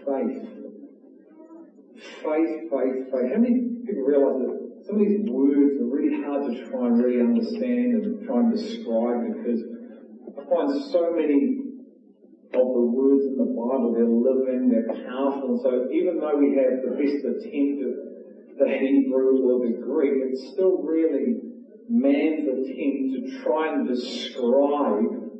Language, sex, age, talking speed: English, male, 40-59, 150 wpm